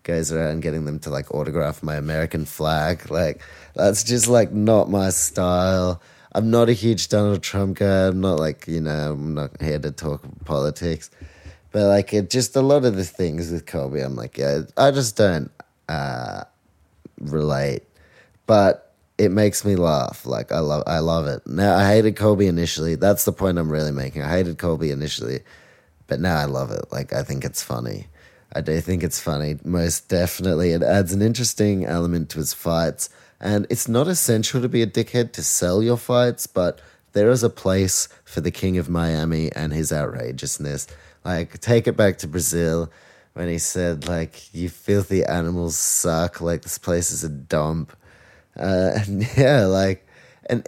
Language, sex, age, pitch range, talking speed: English, male, 30-49, 80-100 Hz, 185 wpm